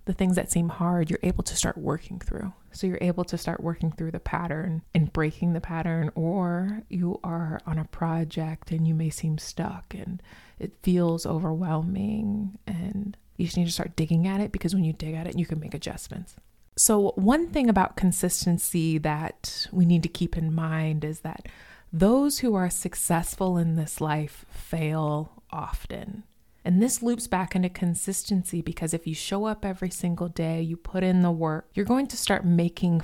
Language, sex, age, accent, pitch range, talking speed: English, female, 20-39, American, 165-195 Hz, 190 wpm